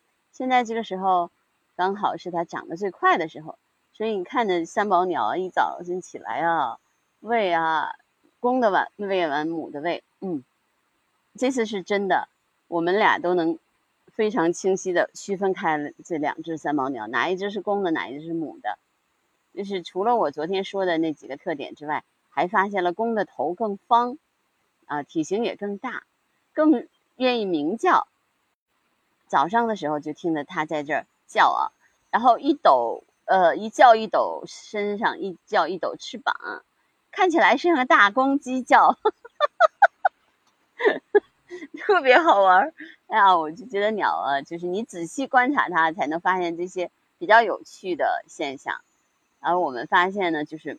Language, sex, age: Chinese, female, 30-49